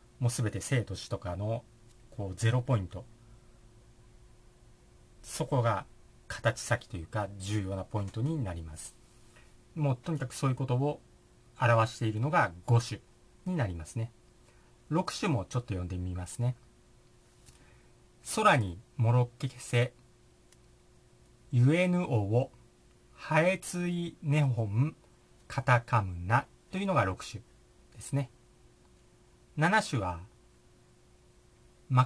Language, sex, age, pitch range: Japanese, male, 50-69, 105-130 Hz